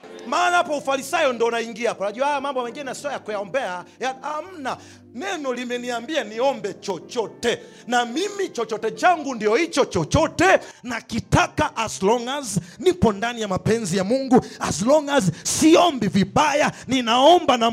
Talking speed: 150 wpm